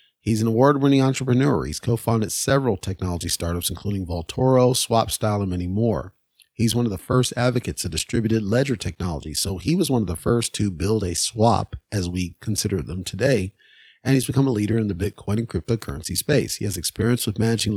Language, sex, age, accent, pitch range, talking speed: English, male, 40-59, American, 100-120 Hz, 195 wpm